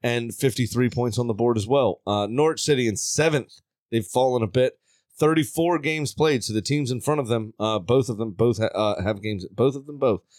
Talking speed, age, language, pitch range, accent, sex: 225 wpm, 30-49, English, 110-140 Hz, American, male